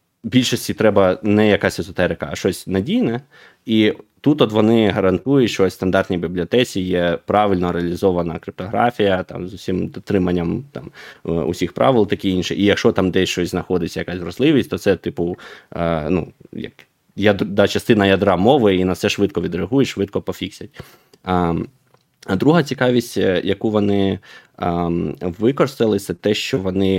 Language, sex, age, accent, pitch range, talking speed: Ukrainian, male, 20-39, native, 90-105 Hz, 140 wpm